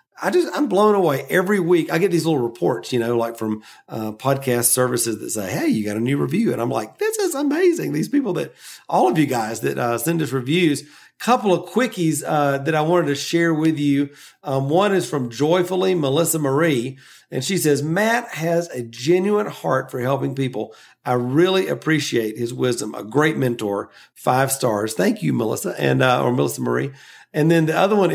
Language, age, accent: English, 40-59, American